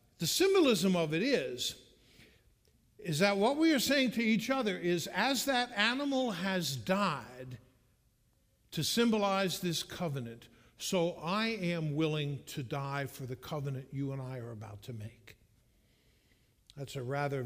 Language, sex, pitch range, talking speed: English, male, 145-220 Hz, 150 wpm